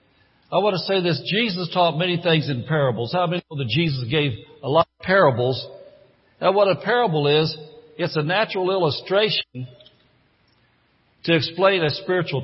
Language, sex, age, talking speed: English, male, 60-79, 165 wpm